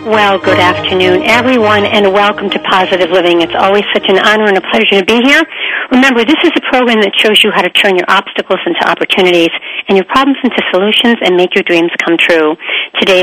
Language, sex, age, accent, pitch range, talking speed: English, female, 50-69, American, 190-270 Hz, 215 wpm